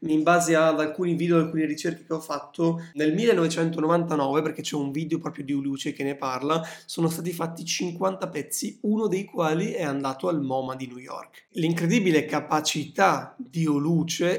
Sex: male